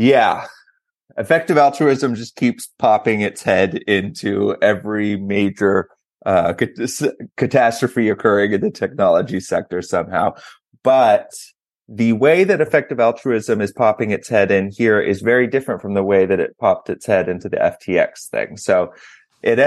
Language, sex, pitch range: English, male, 95-115 Hz